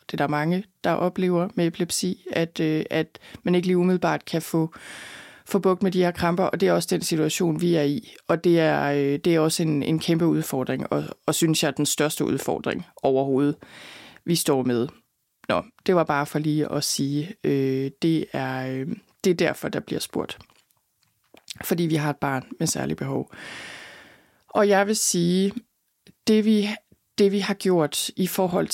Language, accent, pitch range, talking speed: Danish, native, 155-185 Hz, 190 wpm